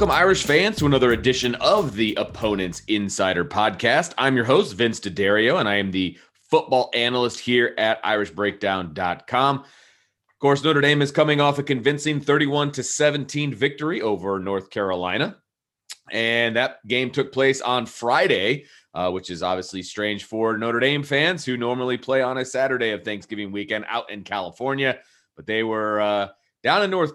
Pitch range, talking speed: 105-135 Hz, 165 wpm